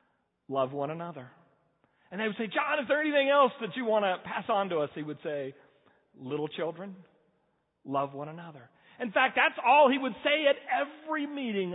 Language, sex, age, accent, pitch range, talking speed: English, male, 50-69, American, 155-250 Hz, 195 wpm